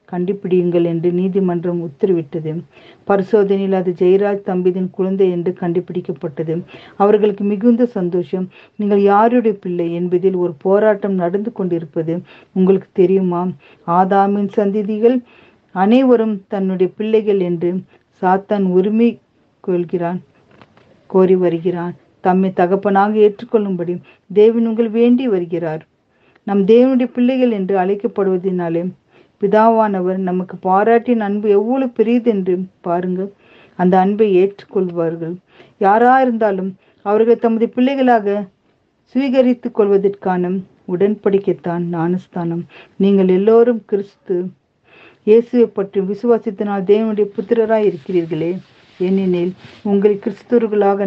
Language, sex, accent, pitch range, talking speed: Tamil, female, native, 180-215 Hz, 90 wpm